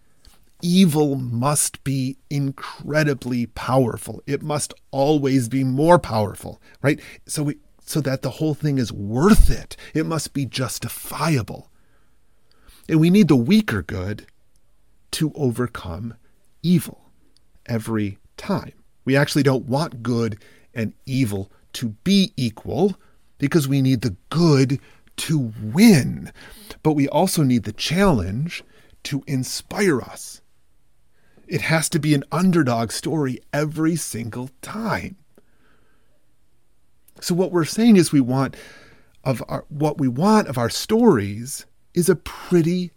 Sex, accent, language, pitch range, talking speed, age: male, American, English, 115-155 Hz, 125 wpm, 40-59